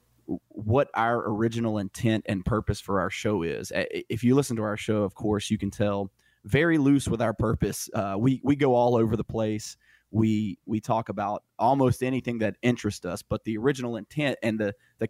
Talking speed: 200 wpm